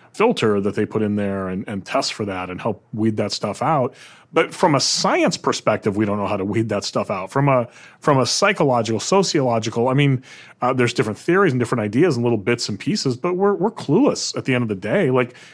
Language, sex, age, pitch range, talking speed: English, male, 30-49, 115-150 Hz, 240 wpm